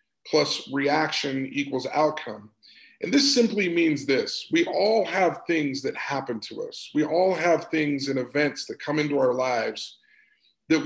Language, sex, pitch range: English, male, 140-190 Hz